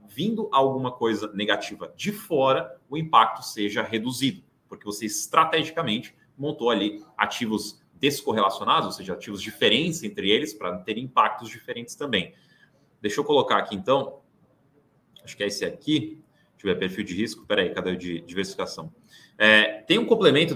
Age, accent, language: 20-39, Brazilian, Portuguese